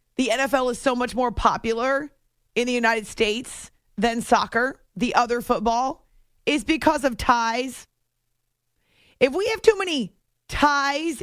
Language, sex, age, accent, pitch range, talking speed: English, female, 30-49, American, 180-265 Hz, 140 wpm